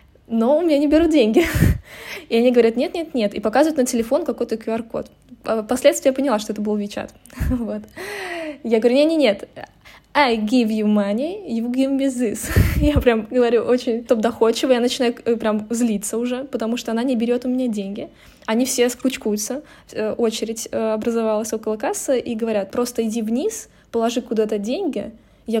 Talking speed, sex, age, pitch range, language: 160 wpm, female, 20-39, 215-250 Hz, Russian